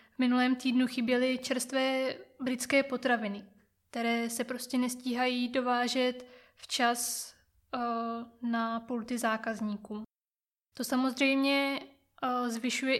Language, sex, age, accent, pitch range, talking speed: Czech, female, 20-39, native, 235-255 Hz, 90 wpm